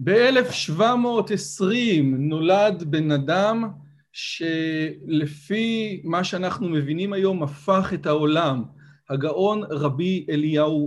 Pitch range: 150-195 Hz